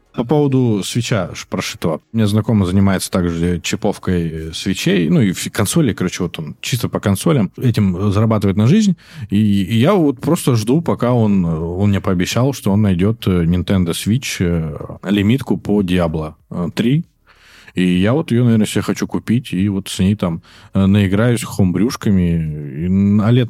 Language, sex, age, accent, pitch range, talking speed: Russian, male, 20-39, native, 95-120 Hz, 155 wpm